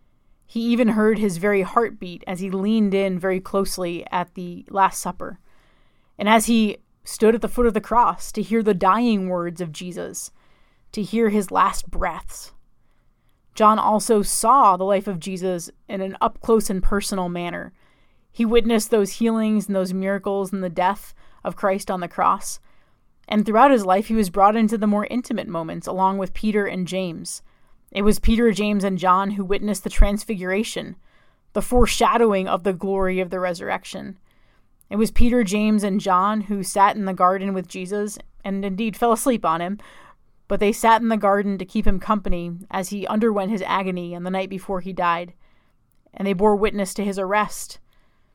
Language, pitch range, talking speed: English, 185-215 Hz, 180 wpm